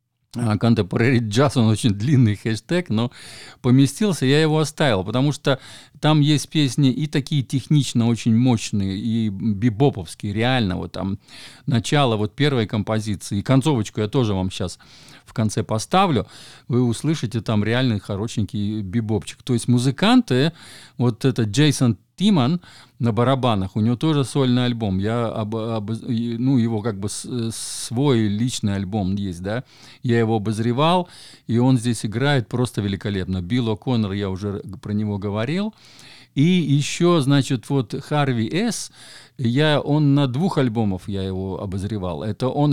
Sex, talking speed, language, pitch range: male, 140 wpm, Russian, 110-135 Hz